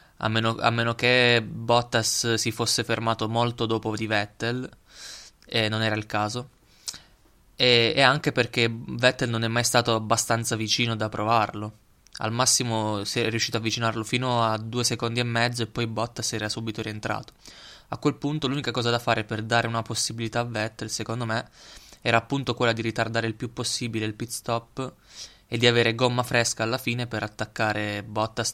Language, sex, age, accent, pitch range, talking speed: Italian, male, 20-39, native, 110-120 Hz, 180 wpm